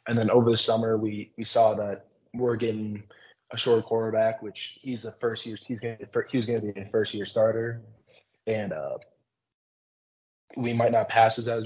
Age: 20-39